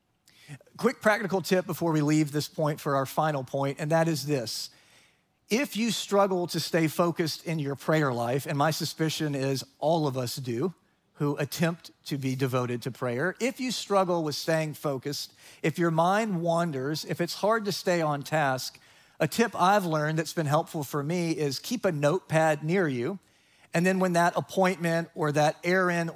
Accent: American